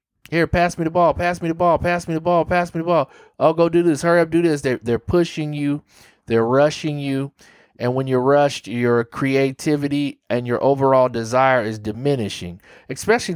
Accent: American